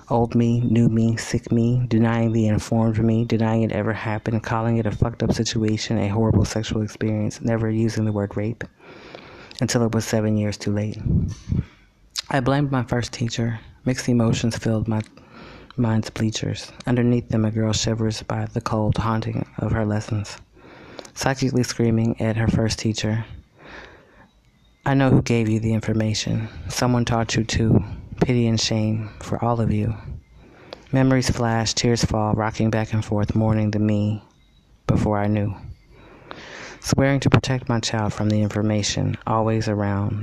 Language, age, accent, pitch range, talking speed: English, 30-49, American, 105-115 Hz, 160 wpm